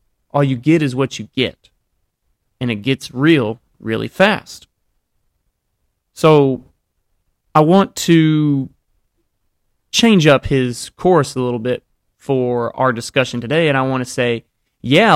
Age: 30-49